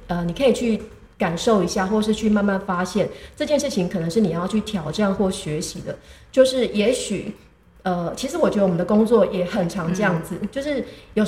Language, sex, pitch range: Chinese, female, 180-225 Hz